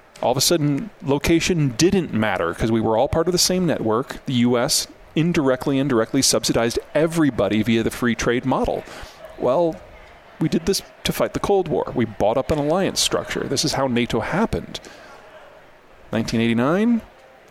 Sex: male